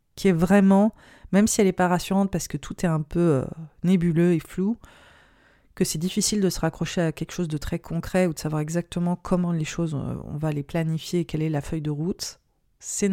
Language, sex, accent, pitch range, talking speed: French, female, French, 155-185 Hz, 225 wpm